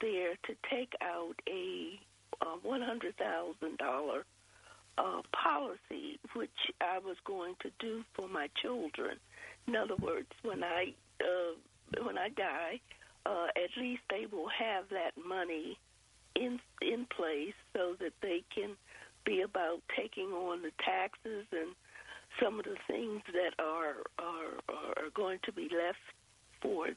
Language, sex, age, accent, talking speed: English, female, 60-79, American, 140 wpm